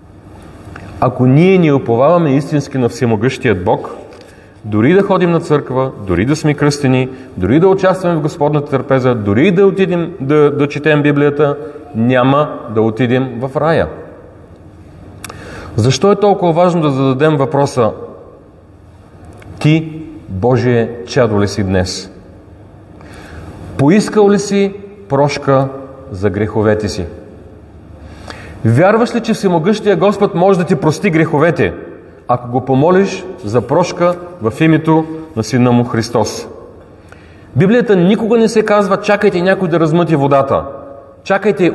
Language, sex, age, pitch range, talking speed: Bulgarian, male, 40-59, 105-180 Hz, 125 wpm